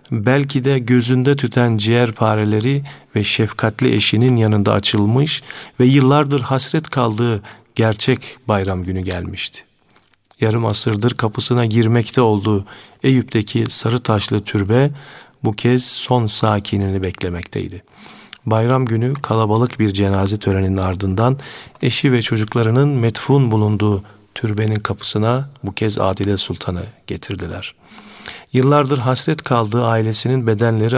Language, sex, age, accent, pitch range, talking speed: Turkish, male, 40-59, native, 105-125 Hz, 110 wpm